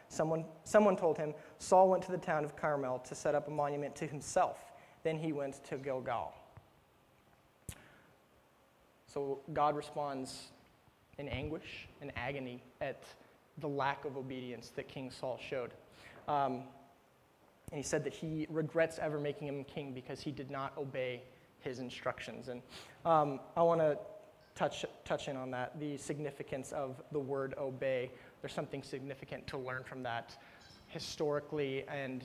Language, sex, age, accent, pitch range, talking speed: English, male, 30-49, American, 130-155 Hz, 150 wpm